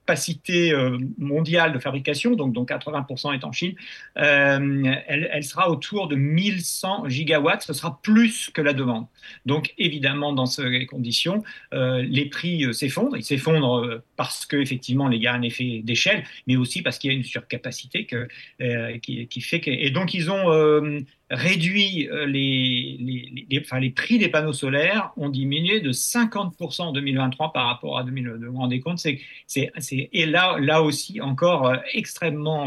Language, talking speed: French, 175 wpm